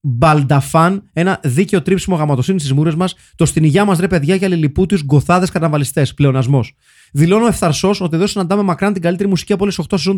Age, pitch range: 30-49, 150-190 Hz